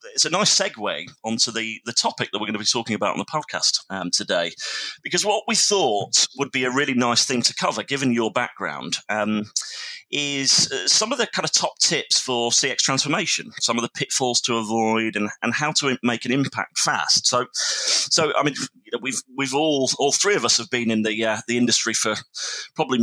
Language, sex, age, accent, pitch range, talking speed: English, male, 30-49, British, 110-140 Hz, 215 wpm